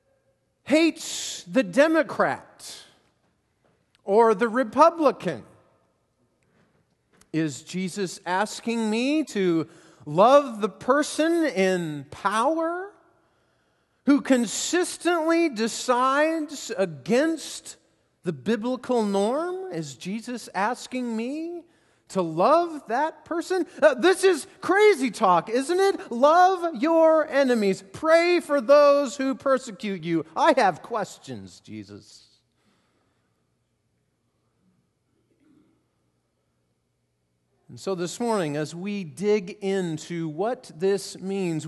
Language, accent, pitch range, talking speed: English, American, 175-290 Hz, 90 wpm